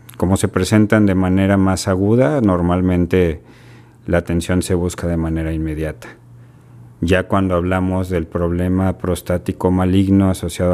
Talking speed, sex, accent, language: 130 wpm, male, Mexican, Spanish